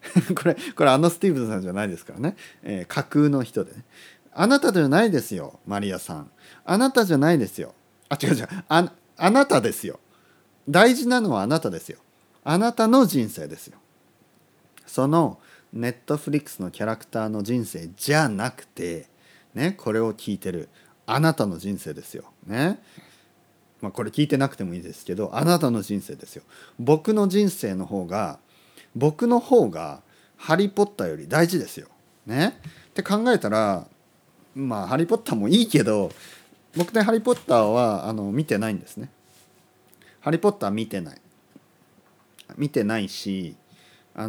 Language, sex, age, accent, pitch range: Japanese, male, 40-59, native, 105-175 Hz